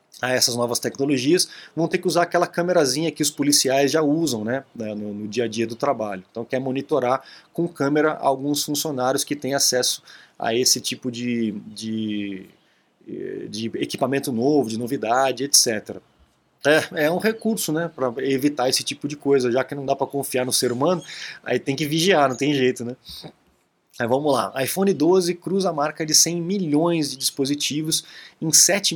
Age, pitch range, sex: 20-39, 125-160 Hz, male